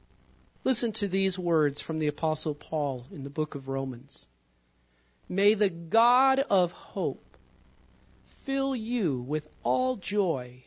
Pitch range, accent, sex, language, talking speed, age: 115-180 Hz, American, male, English, 130 wpm, 50-69